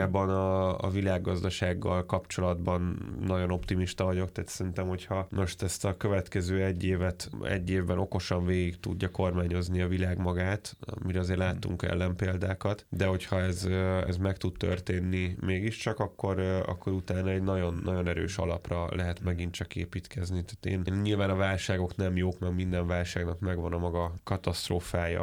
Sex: male